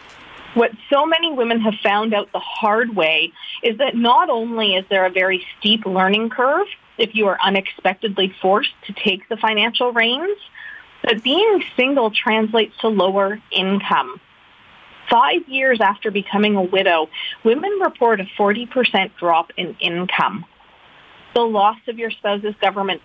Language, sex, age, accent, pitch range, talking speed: English, female, 30-49, American, 190-240 Hz, 150 wpm